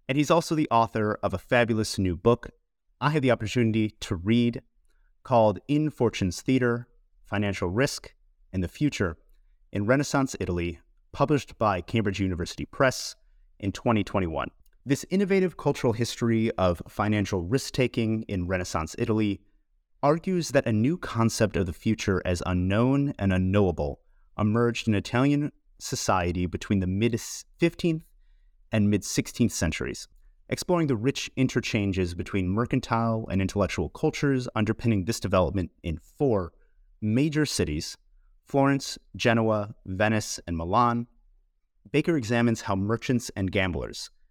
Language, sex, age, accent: English, male, 30-49, American